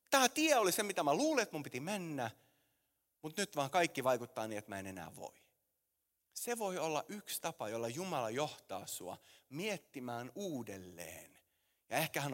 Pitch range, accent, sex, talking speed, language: 125-205 Hz, native, male, 175 wpm, Finnish